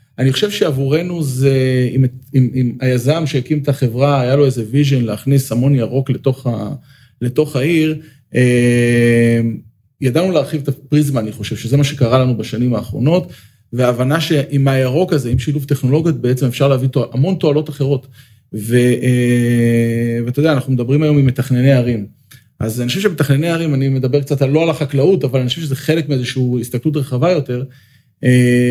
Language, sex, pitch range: Hebrew, male, 125-150 Hz